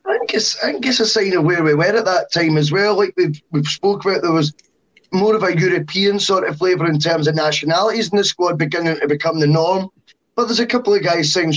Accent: British